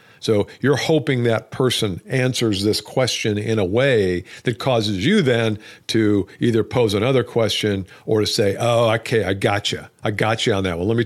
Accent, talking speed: American, 195 wpm